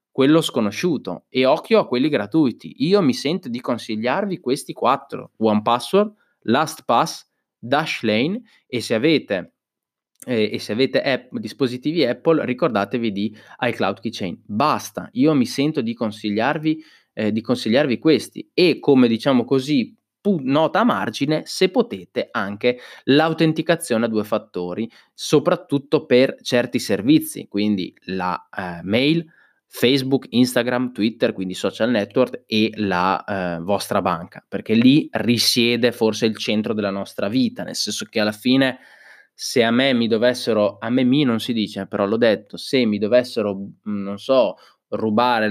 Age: 20-39